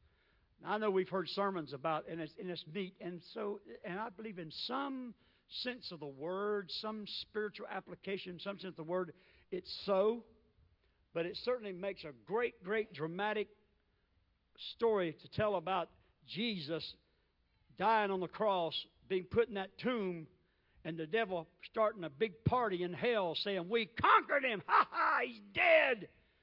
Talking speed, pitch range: 155 wpm, 190-275 Hz